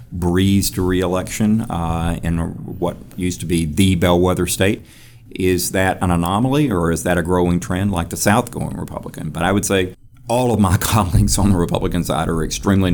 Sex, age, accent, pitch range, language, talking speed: male, 50-69, American, 85-100 Hz, English, 185 wpm